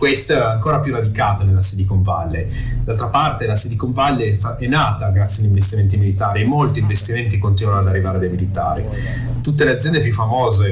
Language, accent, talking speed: Italian, native, 180 wpm